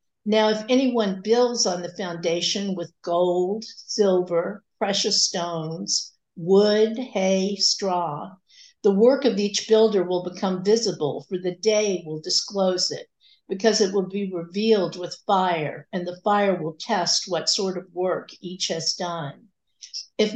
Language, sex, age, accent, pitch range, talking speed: English, female, 60-79, American, 180-215 Hz, 145 wpm